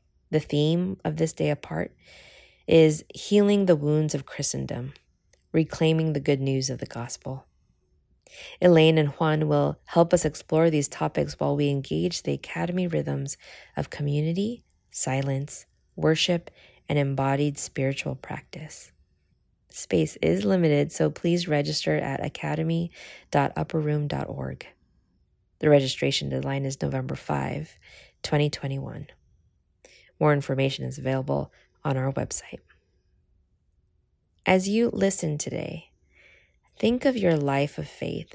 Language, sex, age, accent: English, female, 20-39, American